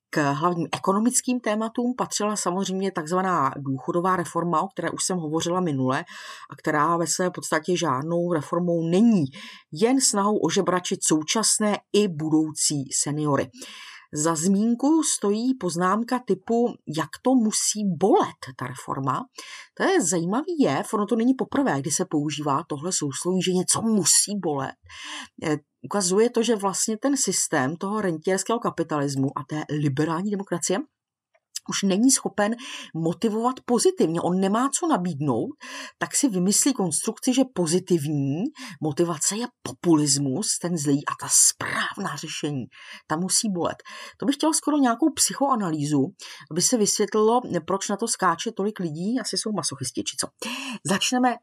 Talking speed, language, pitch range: 140 wpm, Czech, 155-225 Hz